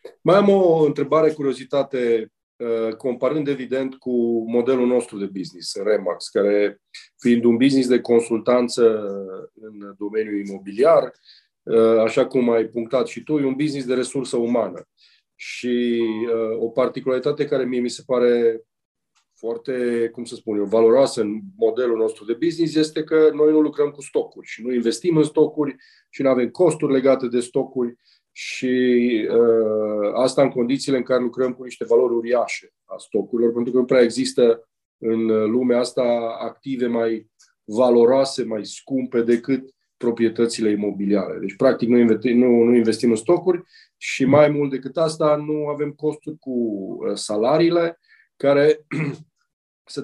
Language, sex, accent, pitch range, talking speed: Romanian, male, native, 115-140 Hz, 145 wpm